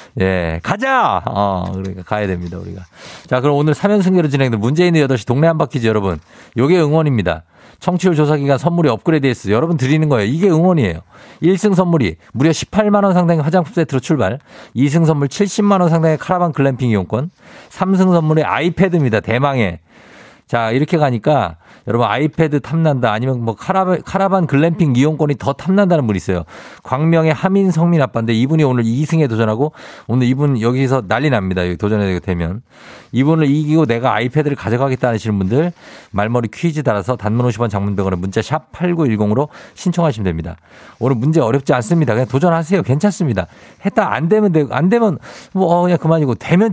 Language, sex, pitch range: Korean, male, 110-165 Hz